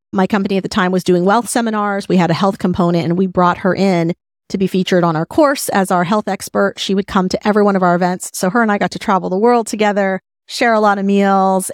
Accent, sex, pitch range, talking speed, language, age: American, female, 185-220 Hz, 270 wpm, English, 30-49